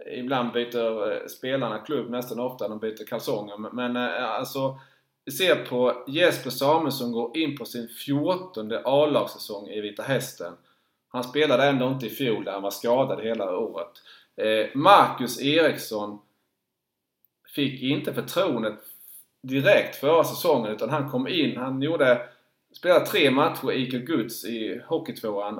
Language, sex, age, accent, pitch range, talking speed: Swedish, male, 30-49, Norwegian, 115-140 Hz, 140 wpm